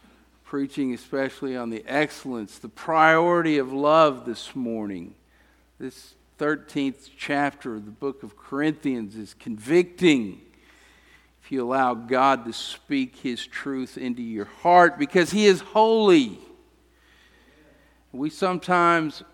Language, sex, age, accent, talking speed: English, male, 50-69, American, 120 wpm